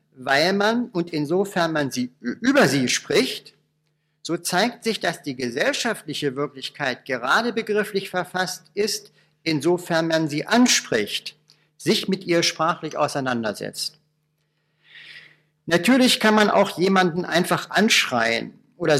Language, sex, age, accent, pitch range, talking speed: German, male, 50-69, German, 150-200 Hz, 115 wpm